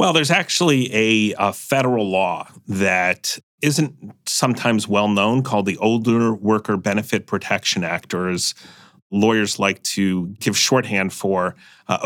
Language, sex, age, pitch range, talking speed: English, male, 40-59, 105-130 Hz, 135 wpm